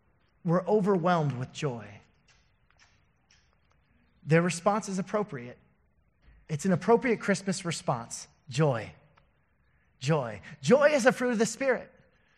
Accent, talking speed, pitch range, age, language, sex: American, 105 wpm, 165-225 Hz, 30-49, English, male